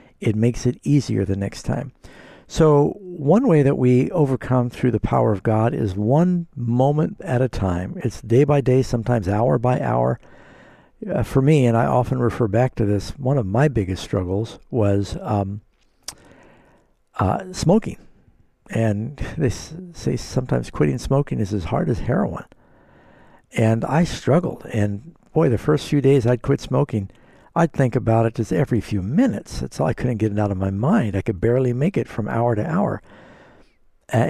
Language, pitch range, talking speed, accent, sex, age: English, 105-140 Hz, 180 wpm, American, male, 60-79